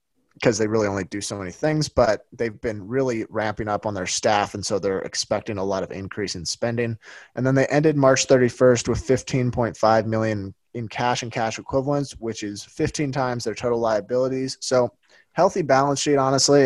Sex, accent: male, American